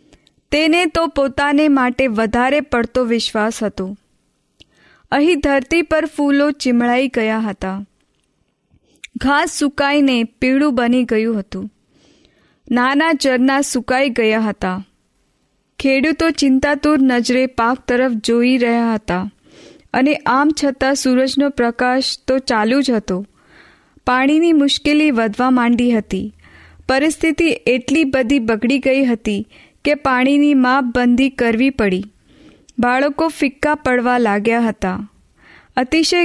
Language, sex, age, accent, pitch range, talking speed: Hindi, female, 20-39, native, 235-290 Hz, 60 wpm